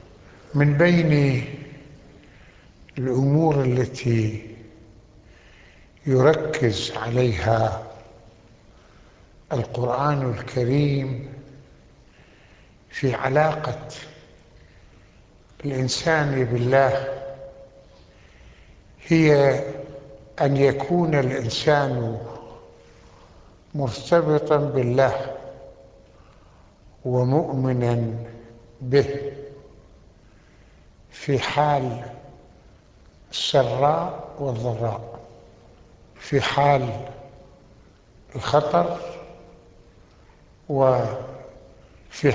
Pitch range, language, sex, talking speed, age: 115-140 Hz, Arabic, male, 40 wpm, 60-79